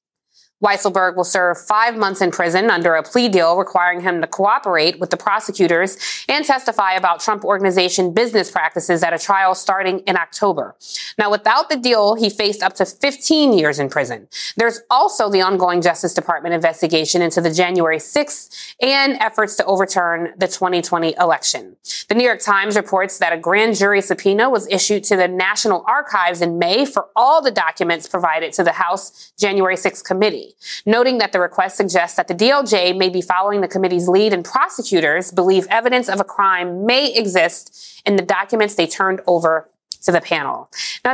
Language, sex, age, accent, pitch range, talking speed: English, female, 20-39, American, 180-215 Hz, 180 wpm